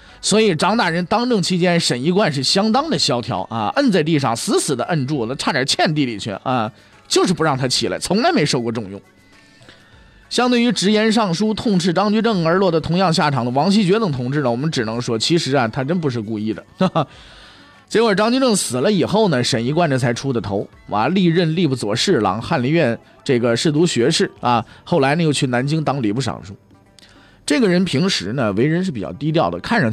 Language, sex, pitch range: Chinese, male, 120-185 Hz